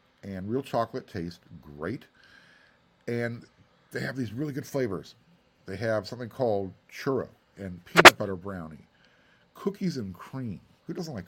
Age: 50-69